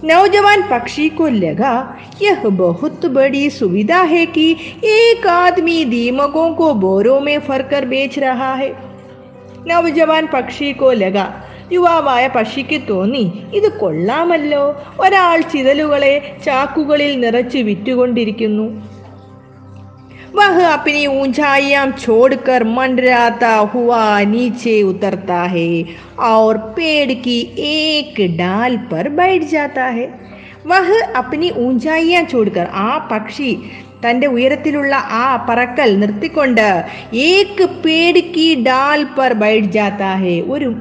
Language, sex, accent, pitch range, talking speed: Malayalam, female, native, 215-305 Hz, 90 wpm